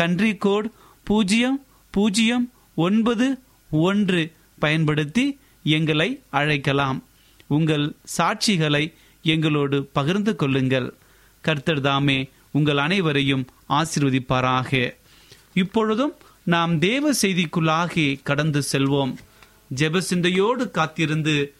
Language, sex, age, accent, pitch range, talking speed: Tamil, male, 30-49, native, 140-195 Hz, 65 wpm